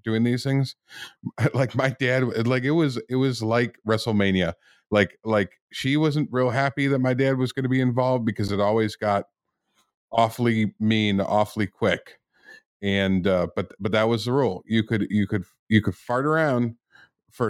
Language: English